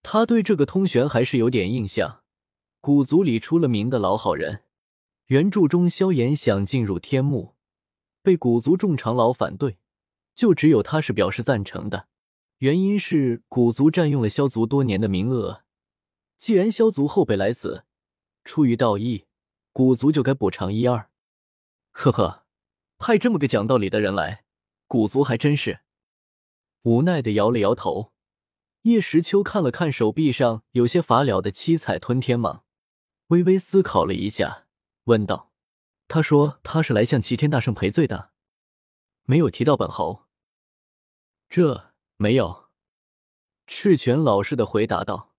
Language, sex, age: Chinese, male, 20-39